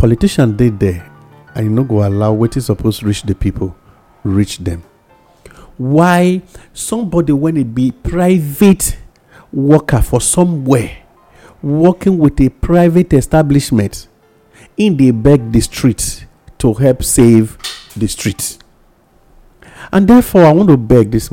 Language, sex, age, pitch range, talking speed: English, male, 50-69, 100-130 Hz, 135 wpm